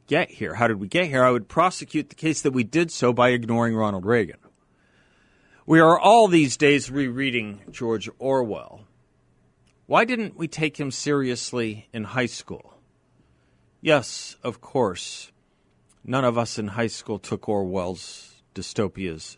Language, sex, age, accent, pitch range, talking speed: English, male, 40-59, American, 110-150 Hz, 150 wpm